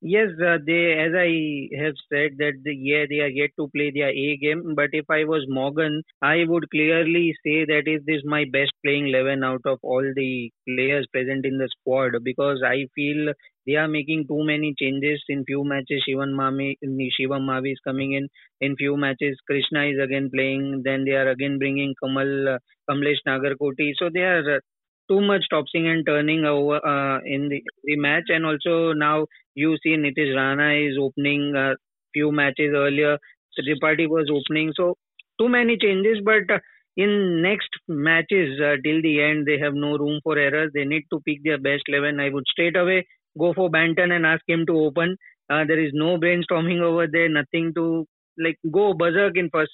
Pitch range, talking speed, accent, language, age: 140-160 Hz, 200 wpm, Indian, English, 20-39